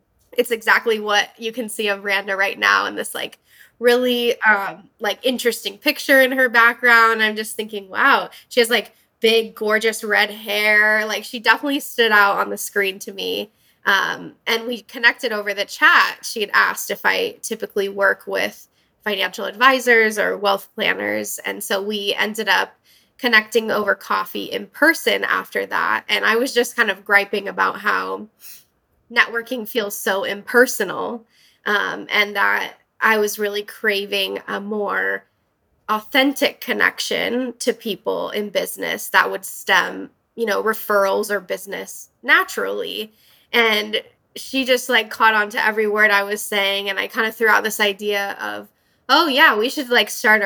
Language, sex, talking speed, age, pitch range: English, female, 165 wpm, 10-29, 205-245 Hz